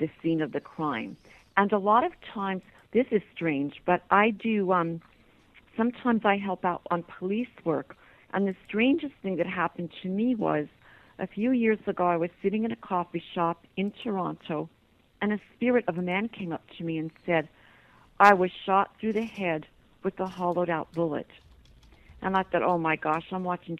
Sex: female